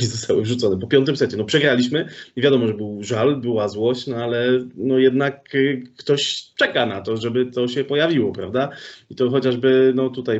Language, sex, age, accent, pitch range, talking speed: Polish, male, 20-39, native, 115-130 Hz, 185 wpm